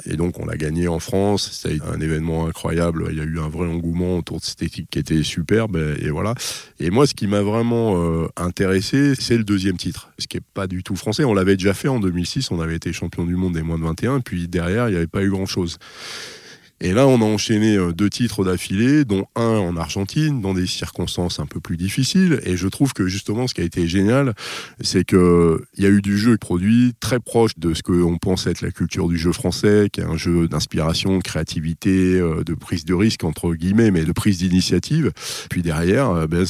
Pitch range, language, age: 85-105 Hz, French, 20-39